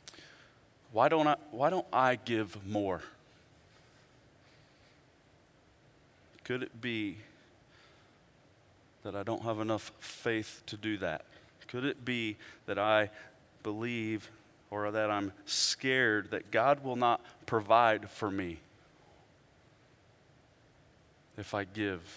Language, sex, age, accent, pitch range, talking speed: English, male, 30-49, American, 110-150 Hz, 110 wpm